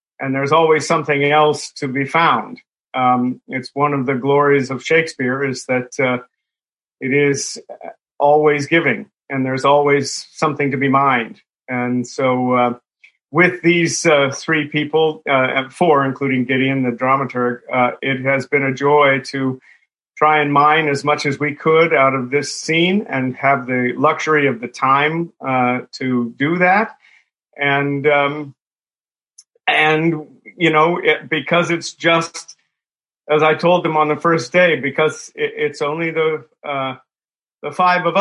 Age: 40-59